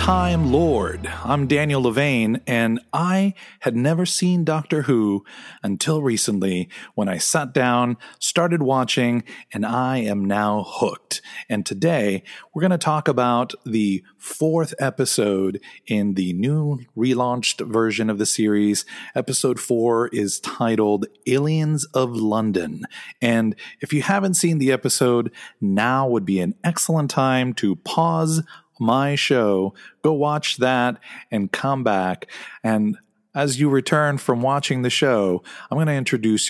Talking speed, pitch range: 140 wpm, 105-145 Hz